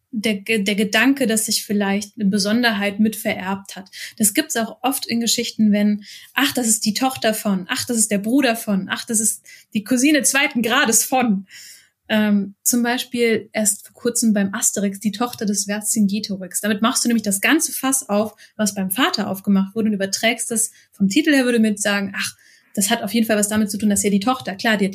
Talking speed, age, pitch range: 215 wpm, 20-39, 200-230 Hz